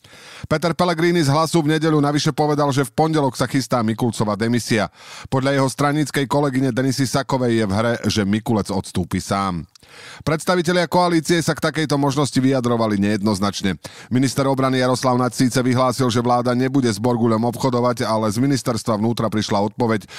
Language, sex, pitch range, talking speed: Slovak, male, 105-140 Hz, 160 wpm